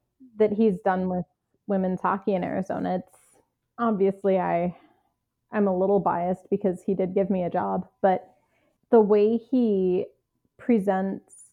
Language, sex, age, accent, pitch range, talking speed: English, female, 30-49, American, 175-200 Hz, 140 wpm